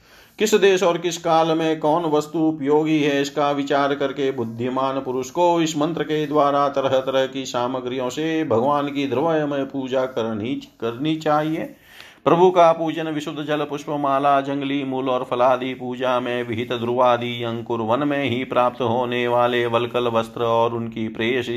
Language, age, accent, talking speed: Hindi, 40-59, native, 160 wpm